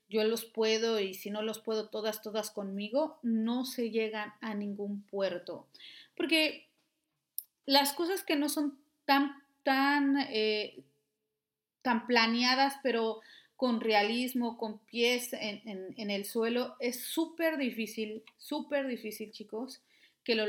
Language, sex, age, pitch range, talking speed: Spanish, female, 30-49, 225-315 Hz, 135 wpm